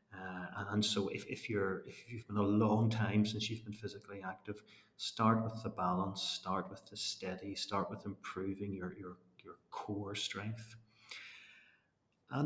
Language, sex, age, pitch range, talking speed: English, male, 40-59, 95-115 Hz, 170 wpm